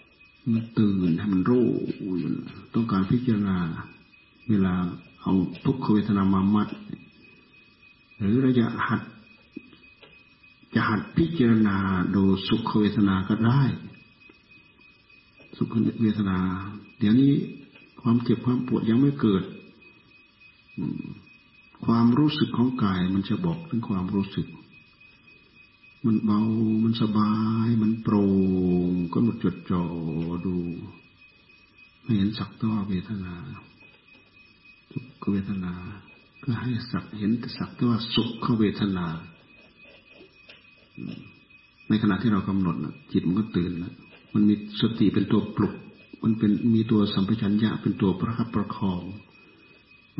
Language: Thai